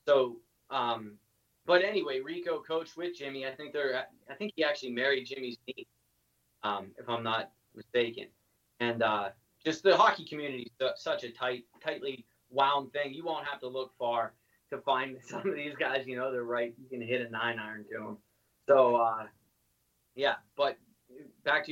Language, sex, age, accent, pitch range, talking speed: English, male, 20-39, American, 120-140 Hz, 180 wpm